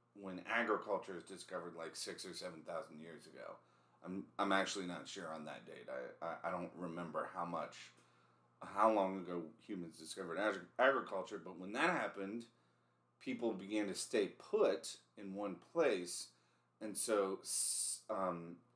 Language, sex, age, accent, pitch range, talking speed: English, male, 40-59, American, 80-115 Hz, 150 wpm